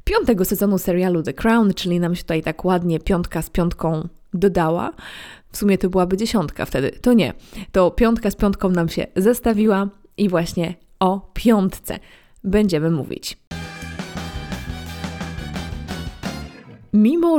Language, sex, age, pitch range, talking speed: Polish, female, 20-39, 175-215 Hz, 130 wpm